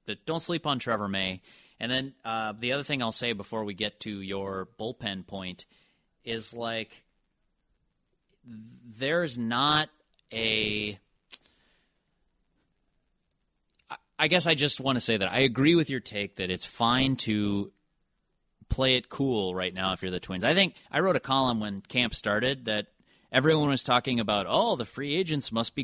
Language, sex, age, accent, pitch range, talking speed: English, male, 30-49, American, 105-135 Hz, 165 wpm